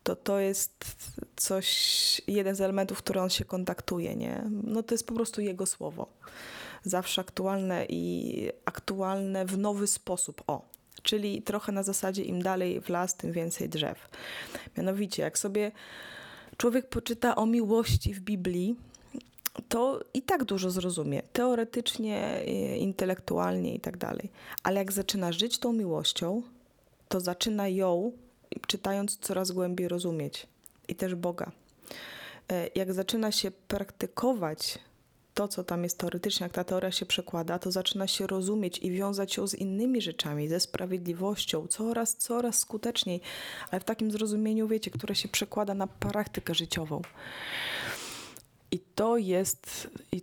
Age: 20-39